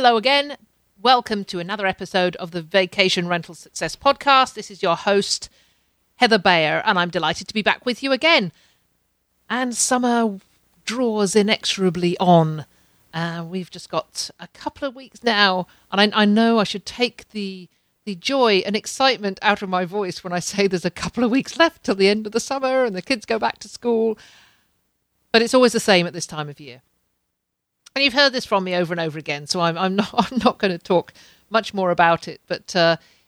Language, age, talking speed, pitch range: English, 50-69, 205 wpm, 175-235 Hz